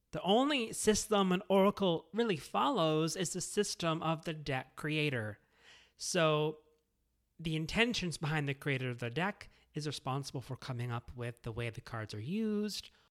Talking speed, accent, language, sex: 160 wpm, American, English, male